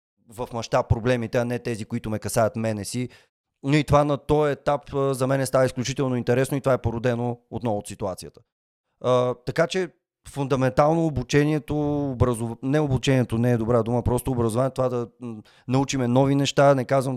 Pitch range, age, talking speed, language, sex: 115-135 Hz, 30-49, 175 wpm, Bulgarian, male